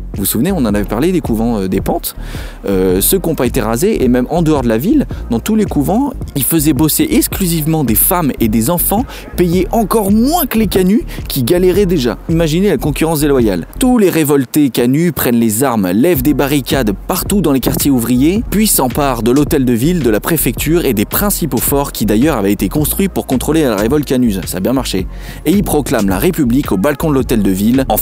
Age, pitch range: 20-39, 115-170 Hz